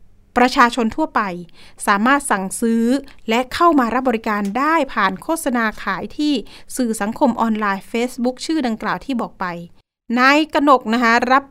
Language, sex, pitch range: Thai, female, 210-280 Hz